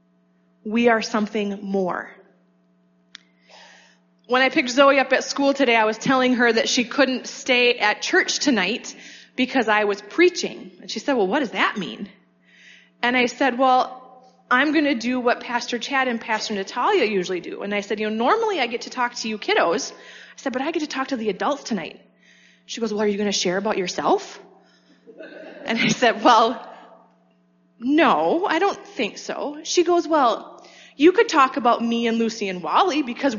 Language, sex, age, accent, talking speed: English, female, 20-39, American, 190 wpm